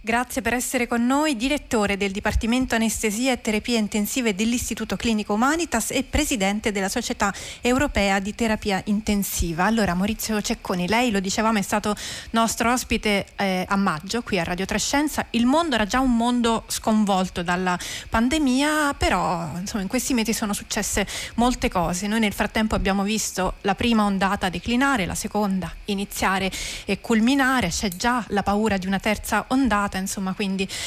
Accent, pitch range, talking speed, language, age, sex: native, 195-235 Hz, 160 wpm, Italian, 30-49, female